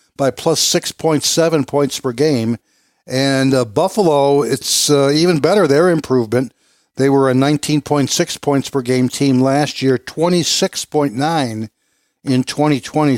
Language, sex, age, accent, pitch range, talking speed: English, male, 60-79, American, 130-155 Hz, 125 wpm